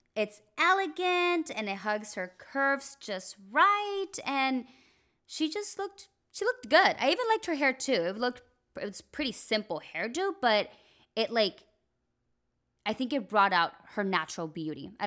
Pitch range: 190-280 Hz